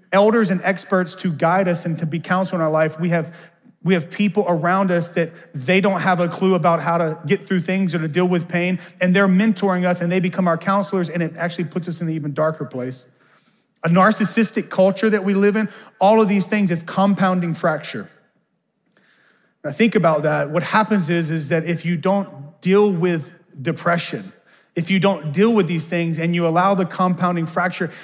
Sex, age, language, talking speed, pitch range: male, 30-49, English, 210 wpm, 160-190 Hz